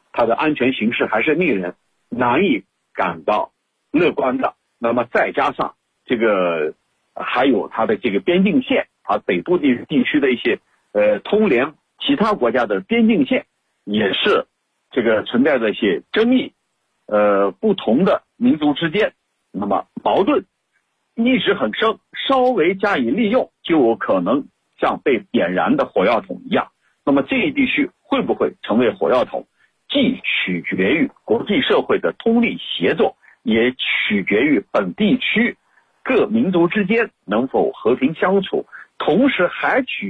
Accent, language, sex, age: native, Chinese, male, 50-69